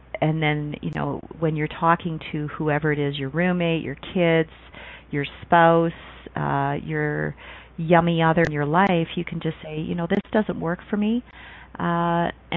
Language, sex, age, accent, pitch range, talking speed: English, female, 40-59, American, 140-165 Hz, 170 wpm